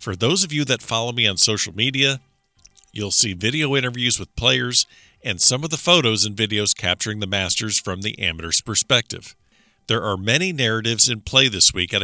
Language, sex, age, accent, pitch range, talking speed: English, male, 50-69, American, 95-125 Hz, 195 wpm